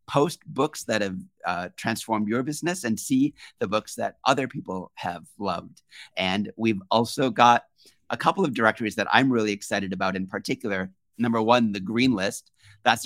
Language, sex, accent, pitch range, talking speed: English, male, American, 100-125 Hz, 175 wpm